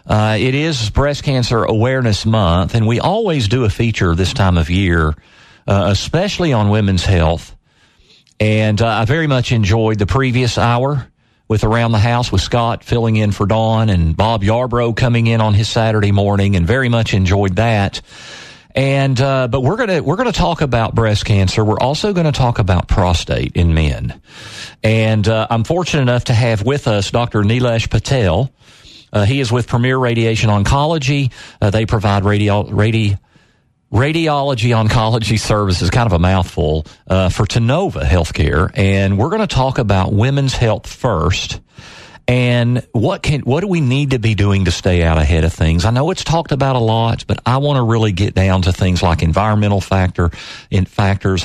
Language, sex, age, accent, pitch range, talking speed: English, male, 50-69, American, 95-125 Hz, 185 wpm